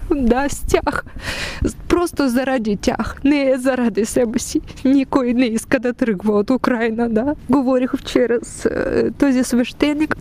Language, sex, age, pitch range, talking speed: Bulgarian, female, 20-39, 185-220 Hz, 130 wpm